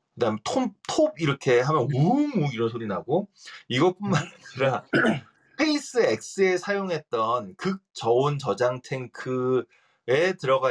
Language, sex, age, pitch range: Korean, male, 30-49, 130-185 Hz